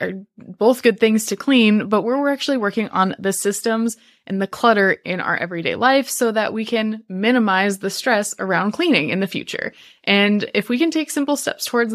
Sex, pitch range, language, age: female, 190-235 Hz, English, 20-39